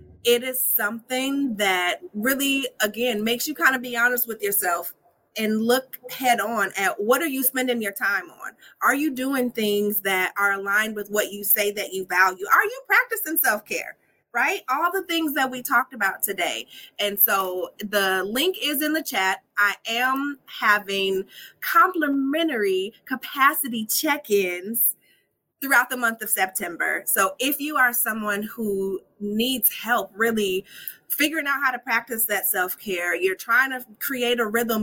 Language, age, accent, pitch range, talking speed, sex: English, 30-49, American, 205-265 Hz, 160 wpm, female